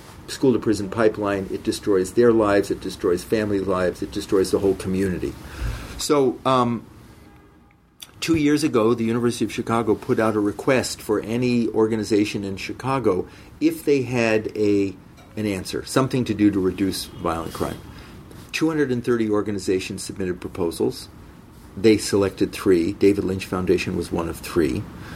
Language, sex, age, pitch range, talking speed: English, male, 50-69, 95-115 Hz, 145 wpm